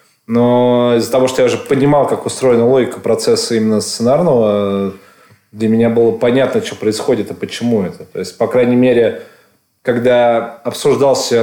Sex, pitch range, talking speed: male, 105-125 Hz, 160 wpm